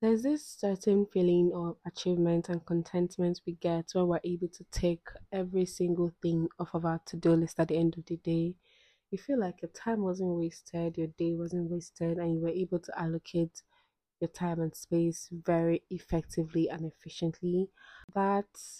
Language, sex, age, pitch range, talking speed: English, female, 20-39, 170-185 Hz, 175 wpm